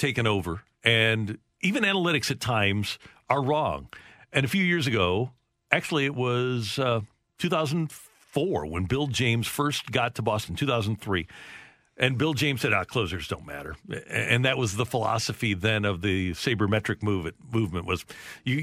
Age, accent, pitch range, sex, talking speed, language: 50-69, American, 110-135 Hz, male, 155 wpm, English